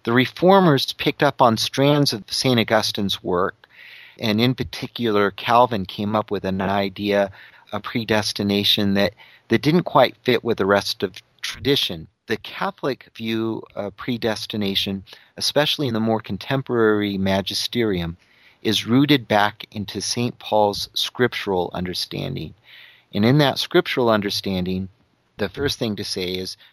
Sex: male